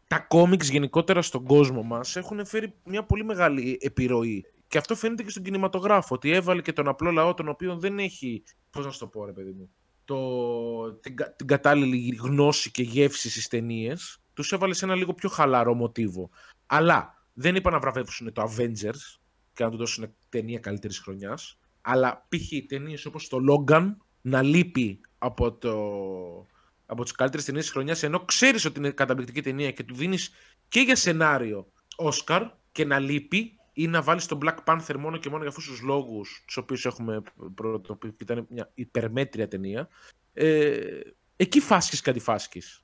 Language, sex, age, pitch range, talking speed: Greek, male, 20-39, 120-165 Hz, 175 wpm